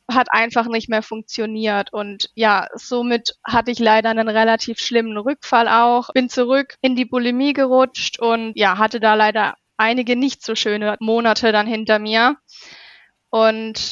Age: 20-39